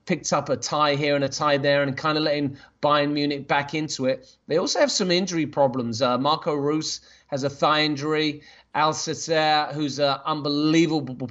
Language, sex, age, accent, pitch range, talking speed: English, male, 40-59, British, 150-185 Hz, 185 wpm